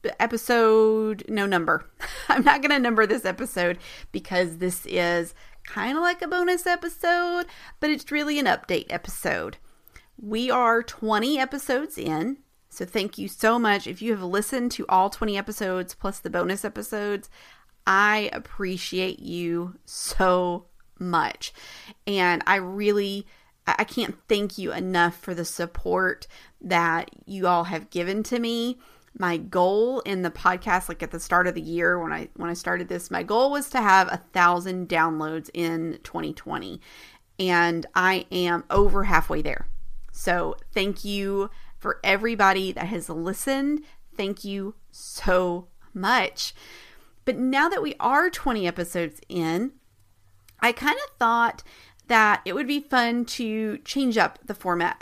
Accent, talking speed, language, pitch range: American, 150 wpm, English, 180-245 Hz